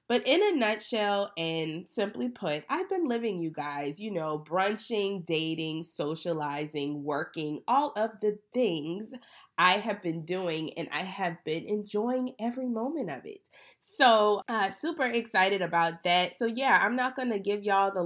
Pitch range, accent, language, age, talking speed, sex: 155-200 Hz, American, English, 20-39, 165 wpm, female